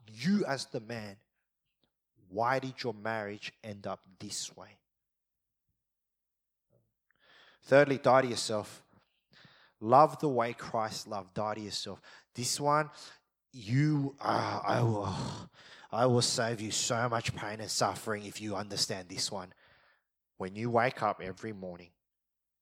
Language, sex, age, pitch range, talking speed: English, male, 20-39, 100-120 Hz, 130 wpm